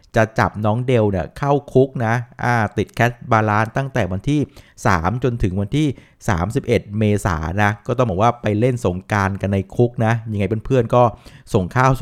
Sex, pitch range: male, 100-125 Hz